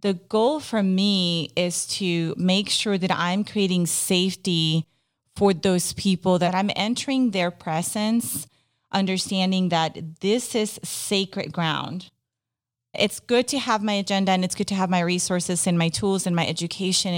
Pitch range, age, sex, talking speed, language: 165-195 Hz, 30-49, female, 155 wpm, English